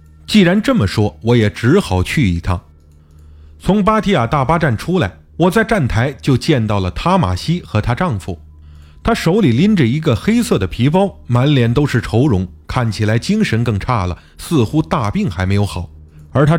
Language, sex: Chinese, male